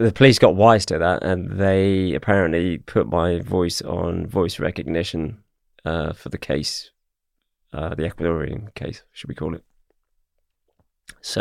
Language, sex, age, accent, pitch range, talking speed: English, male, 20-39, British, 85-105 Hz, 145 wpm